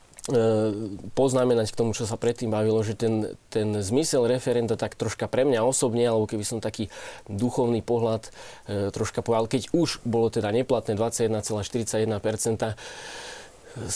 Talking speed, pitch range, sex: 135 wpm, 110-125 Hz, male